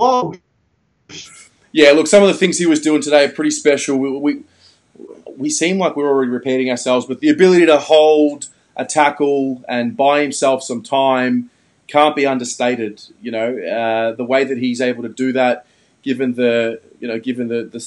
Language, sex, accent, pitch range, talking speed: English, male, Australian, 125-150 Hz, 185 wpm